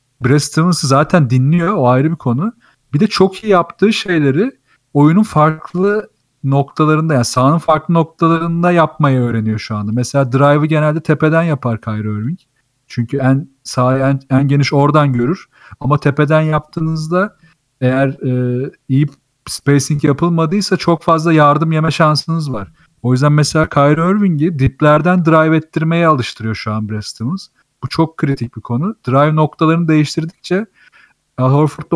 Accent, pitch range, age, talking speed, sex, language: native, 130-165 Hz, 40-59, 140 wpm, male, Turkish